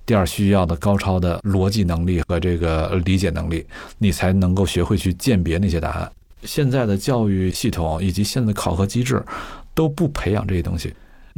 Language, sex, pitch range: Chinese, male, 90-110 Hz